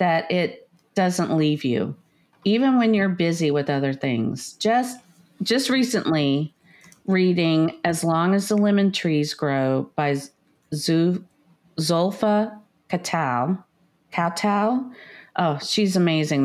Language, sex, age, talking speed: English, female, 50-69, 110 wpm